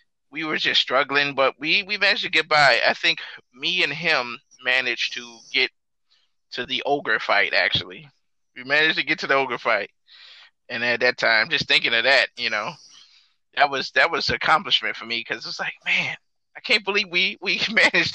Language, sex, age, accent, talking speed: English, male, 20-39, American, 200 wpm